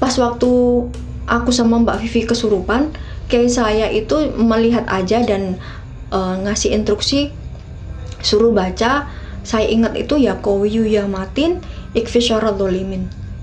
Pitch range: 180-230 Hz